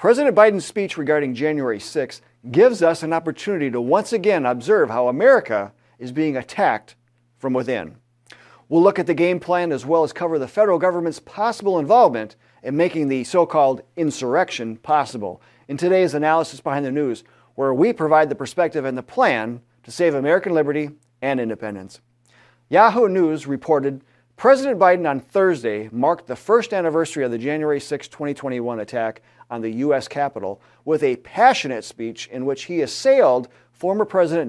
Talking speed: 160 wpm